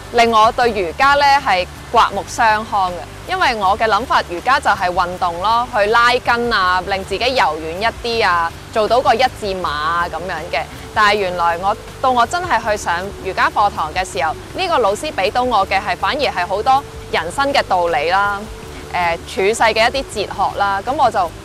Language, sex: Chinese, female